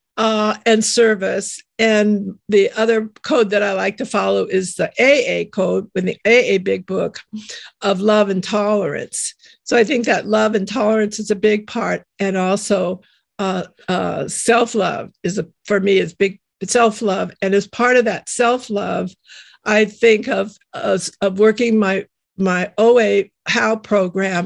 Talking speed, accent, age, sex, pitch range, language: 165 wpm, American, 60-79, female, 190-225 Hz, English